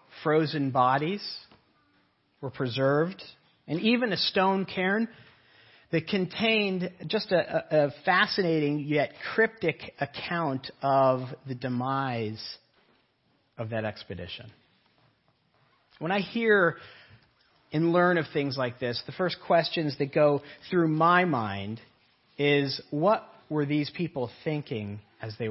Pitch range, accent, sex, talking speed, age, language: 130-180 Hz, American, male, 115 wpm, 40-59, English